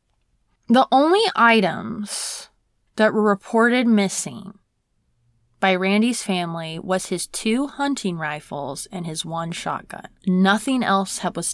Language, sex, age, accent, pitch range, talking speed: English, female, 20-39, American, 170-220 Hz, 115 wpm